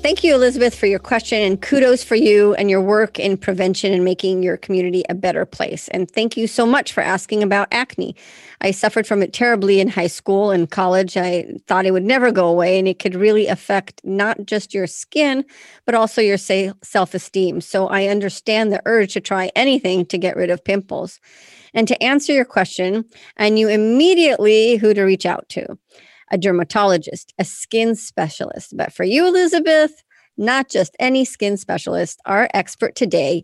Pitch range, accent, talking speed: 185-225 Hz, American, 185 wpm